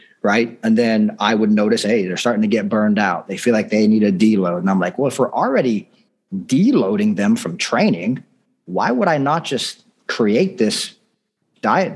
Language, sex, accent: English, male, American